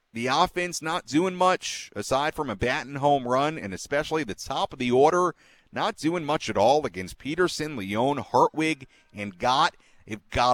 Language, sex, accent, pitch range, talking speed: English, male, American, 90-135 Hz, 175 wpm